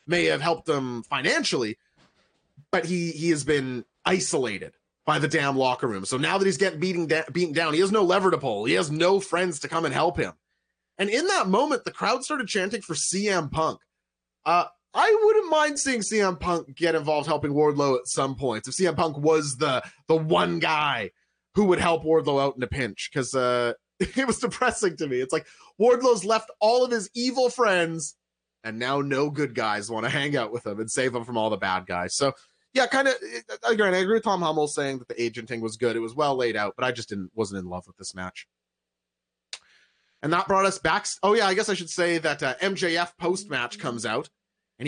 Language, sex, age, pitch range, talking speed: English, male, 30-49, 125-185 Hz, 220 wpm